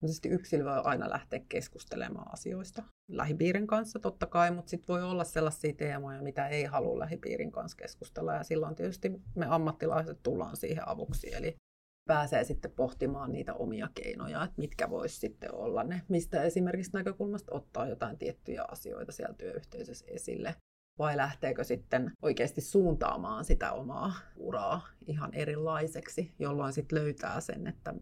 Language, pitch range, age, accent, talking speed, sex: Finnish, 150-180 Hz, 30-49, native, 150 wpm, female